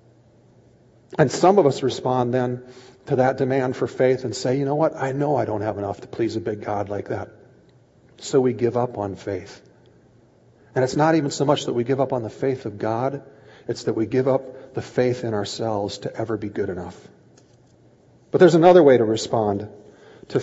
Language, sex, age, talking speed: English, male, 40-59, 210 wpm